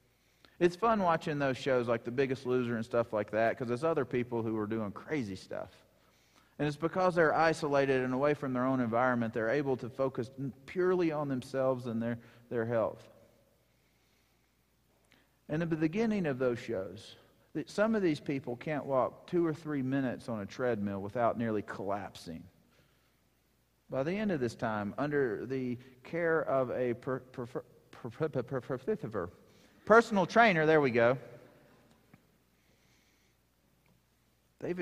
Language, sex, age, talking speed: English, male, 40-59, 155 wpm